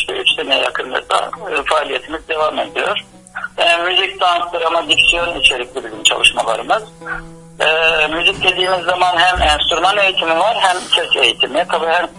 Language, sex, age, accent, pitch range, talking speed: Turkish, male, 60-79, native, 145-190 Hz, 140 wpm